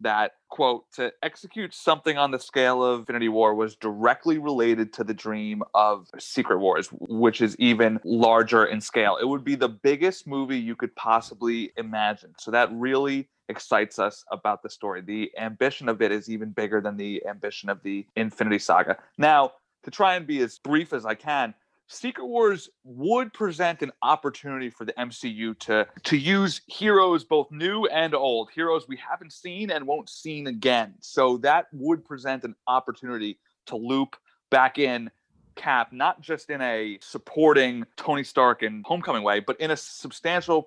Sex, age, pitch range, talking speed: male, 30-49, 115-160 Hz, 175 wpm